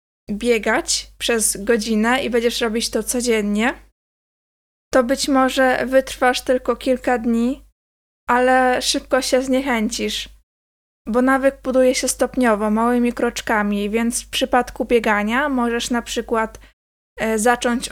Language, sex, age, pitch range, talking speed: Polish, female, 20-39, 225-260 Hz, 115 wpm